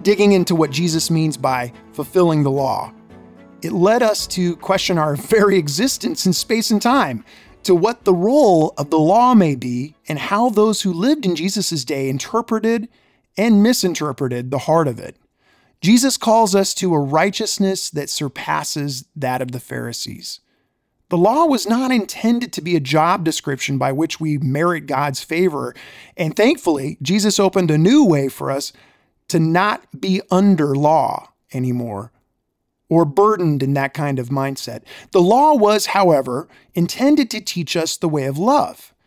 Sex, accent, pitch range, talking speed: male, American, 150-200 Hz, 165 wpm